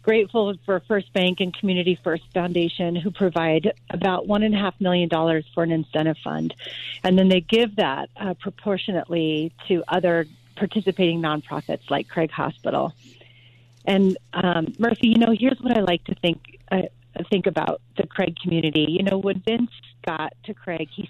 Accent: American